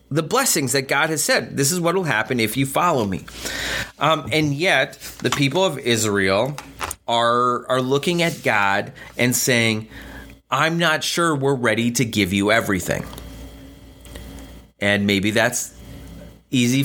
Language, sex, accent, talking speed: English, male, American, 150 wpm